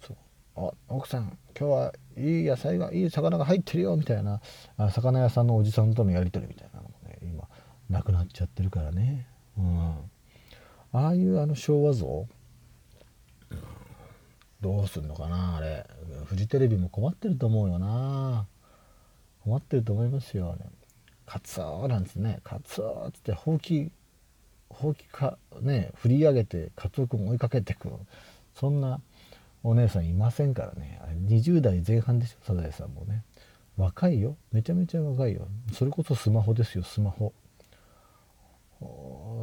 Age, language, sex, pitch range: 40-59, Japanese, male, 95-130 Hz